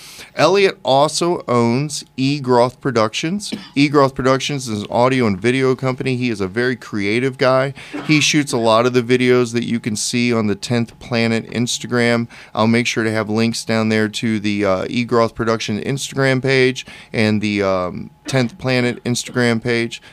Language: English